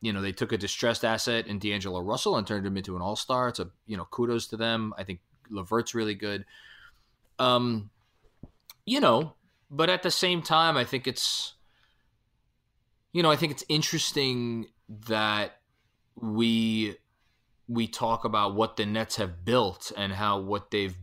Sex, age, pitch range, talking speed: male, 20-39, 100-120 Hz, 170 wpm